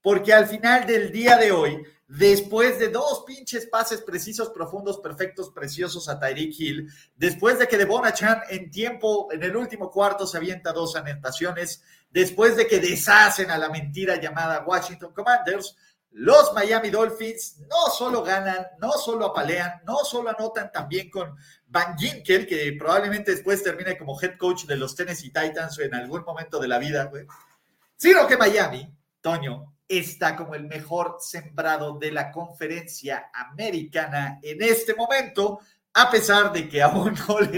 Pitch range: 160-220 Hz